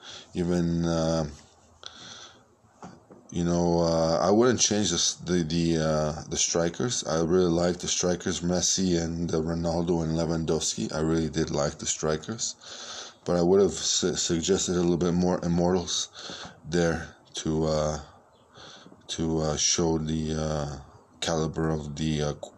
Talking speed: 140 wpm